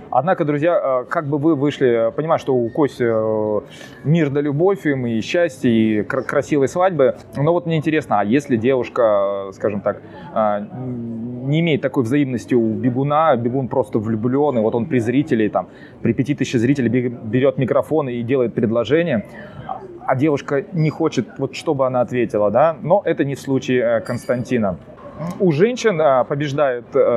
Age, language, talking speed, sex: 20-39, Russian, 150 wpm, male